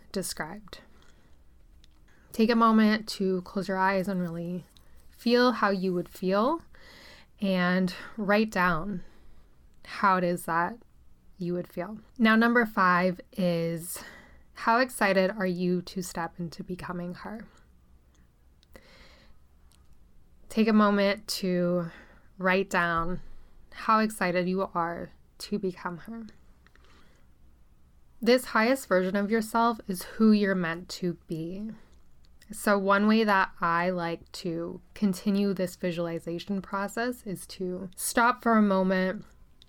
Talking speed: 120 wpm